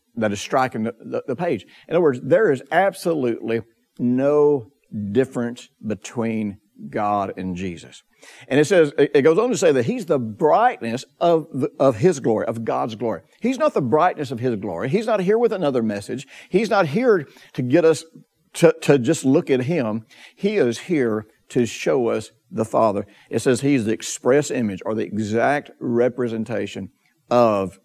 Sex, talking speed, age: male, 175 wpm, 60-79